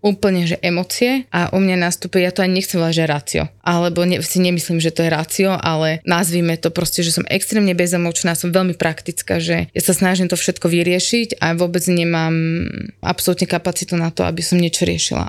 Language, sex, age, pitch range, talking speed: Slovak, female, 20-39, 175-195 Hz, 200 wpm